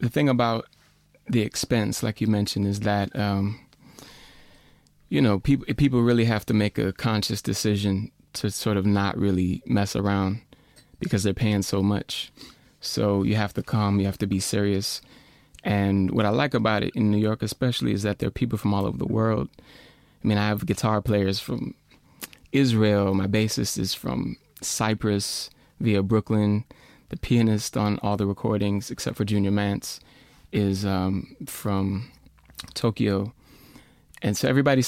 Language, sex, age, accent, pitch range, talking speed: English, male, 20-39, American, 100-115 Hz, 165 wpm